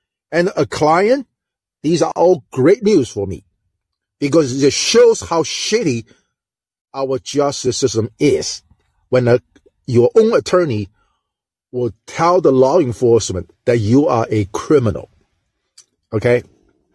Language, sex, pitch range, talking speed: English, male, 125-190 Hz, 120 wpm